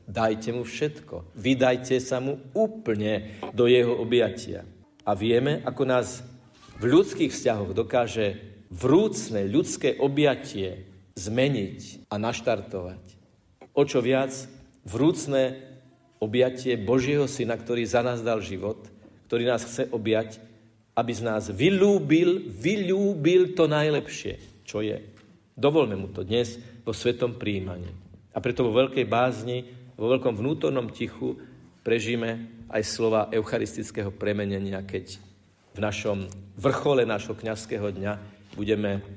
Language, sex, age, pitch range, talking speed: Slovak, male, 50-69, 100-125 Hz, 120 wpm